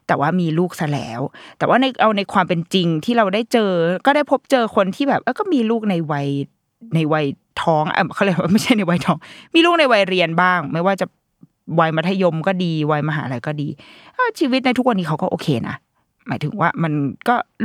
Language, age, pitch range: Thai, 20-39, 165-230 Hz